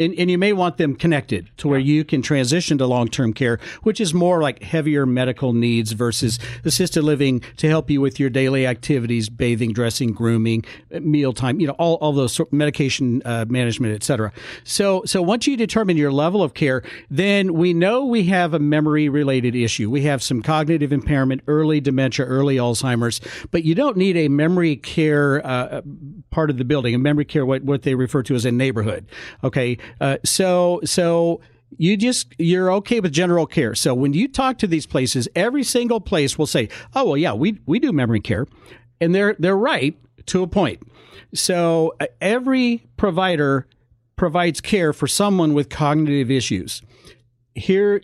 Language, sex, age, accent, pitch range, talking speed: English, male, 50-69, American, 125-170 Hz, 180 wpm